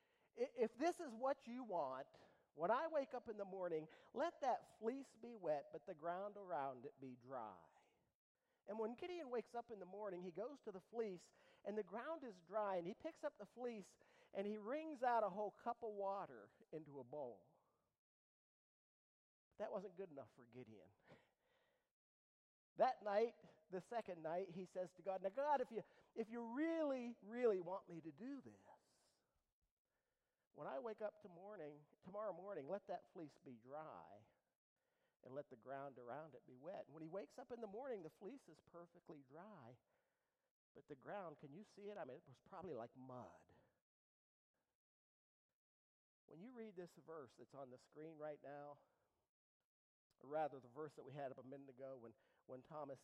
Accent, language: American, English